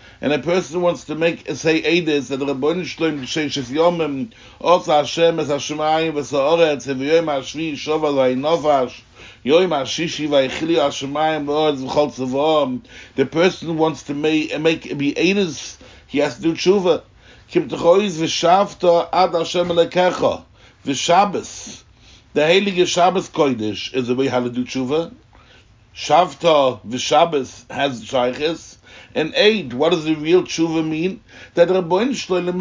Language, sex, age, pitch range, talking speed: English, male, 60-79, 135-185 Hz, 90 wpm